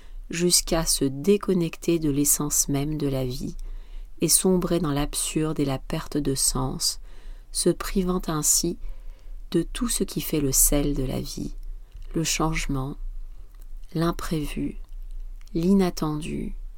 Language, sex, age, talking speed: French, female, 40-59, 125 wpm